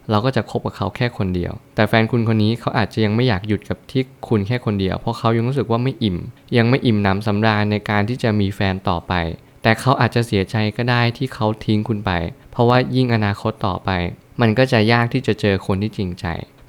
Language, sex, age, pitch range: Thai, male, 20-39, 100-120 Hz